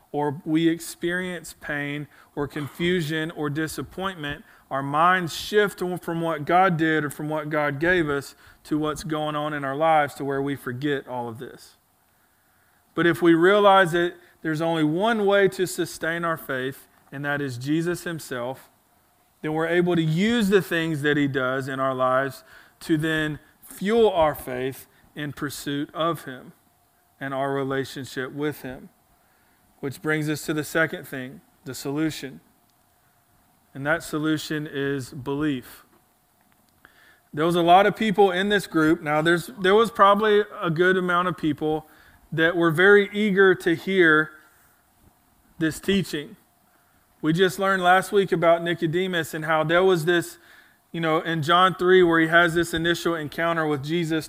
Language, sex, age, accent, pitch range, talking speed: English, male, 40-59, American, 145-175 Hz, 160 wpm